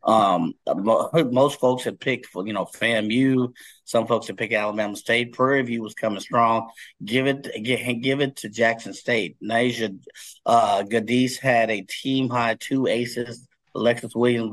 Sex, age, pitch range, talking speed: male, 30-49, 110-125 Hz, 155 wpm